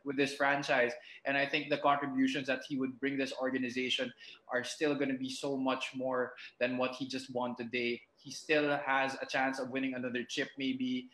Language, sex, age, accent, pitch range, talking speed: English, male, 20-39, Filipino, 120-145 Hz, 205 wpm